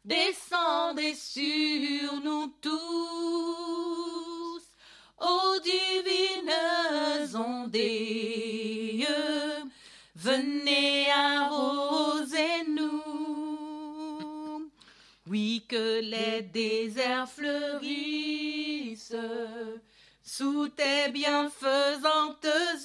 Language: French